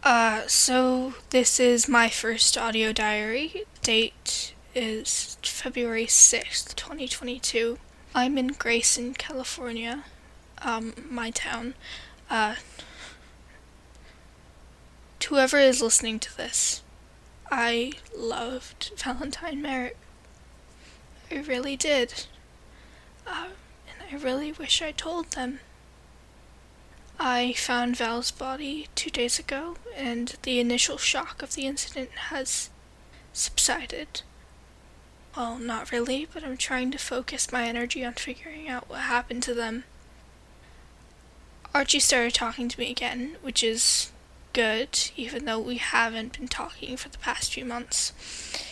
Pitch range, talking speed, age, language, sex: 225-265 Hz, 115 wpm, 10-29, English, female